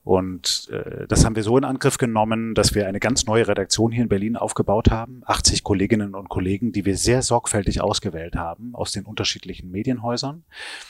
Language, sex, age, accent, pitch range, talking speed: German, male, 30-49, German, 100-125 Hz, 180 wpm